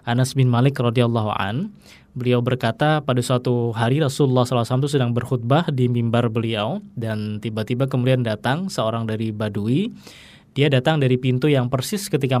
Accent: native